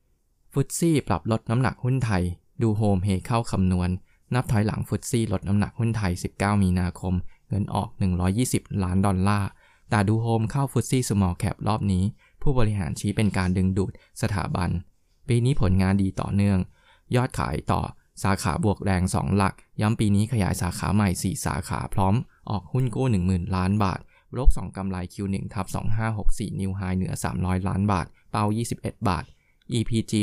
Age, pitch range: 20-39, 95-115 Hz